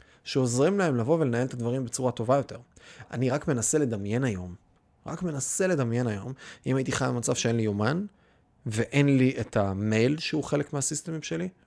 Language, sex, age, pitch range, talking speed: Hebrew, male, 30-49, 110-140 Hz, 170 wpm